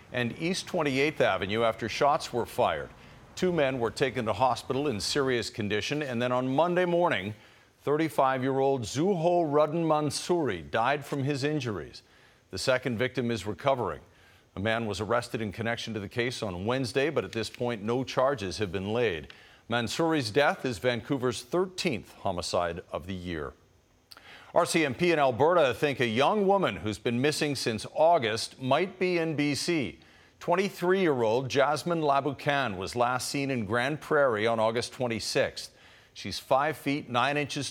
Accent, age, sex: American, 50-69, male